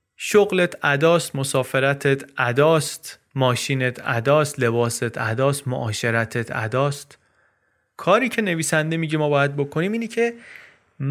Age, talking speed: 30-49, 105 wpm